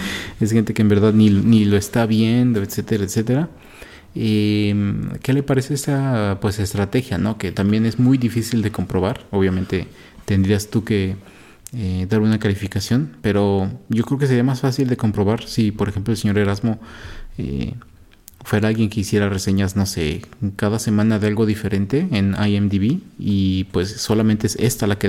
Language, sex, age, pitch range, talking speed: Spanish, male, 30-49, 100-115 Hz, 170 wpm